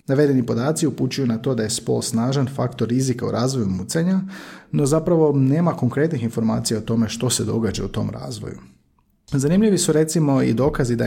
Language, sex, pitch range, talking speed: Croatian, male, 110-135 Hz, 180 wpm